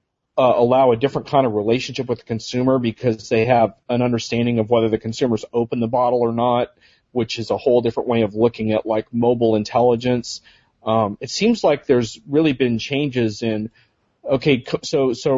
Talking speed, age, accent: 190 wpm, 40-59, American